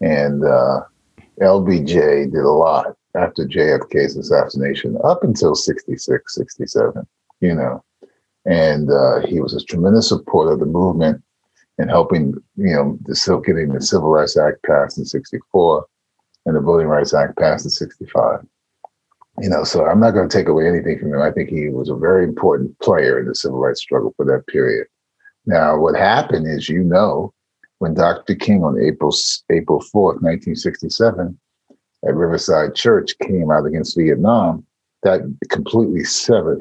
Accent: American